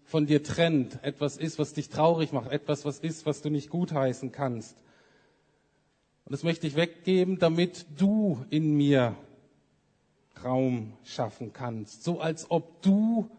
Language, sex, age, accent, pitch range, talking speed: German, male, 50-69, German, 115-155 Hz, 150 wpm